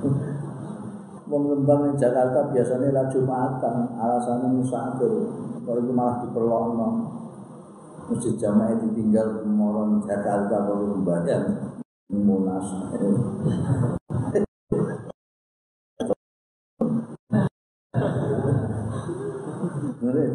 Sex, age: male, 50-69